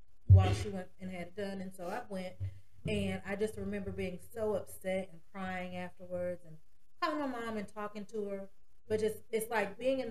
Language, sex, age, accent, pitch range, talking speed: English, female, 40-59, American, 170-200 Hz, 210 wpm